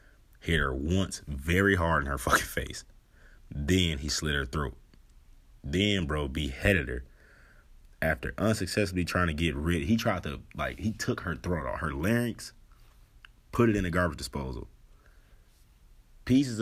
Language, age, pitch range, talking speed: English, 30-49, 70-90 Hz, 150 wpm